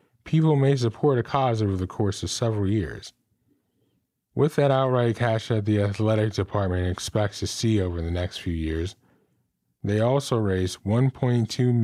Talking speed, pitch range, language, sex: 155 wpm, 100-125 Hz, English, male